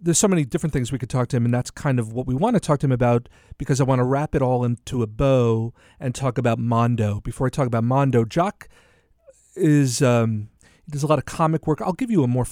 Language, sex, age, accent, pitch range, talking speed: English, male, 40-59, American, 115-150 Hz, 265 wpm